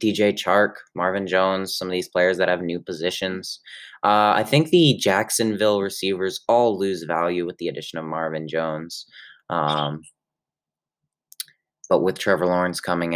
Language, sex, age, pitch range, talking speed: English, male, 20-39, 85-105 Hz, 150 wpm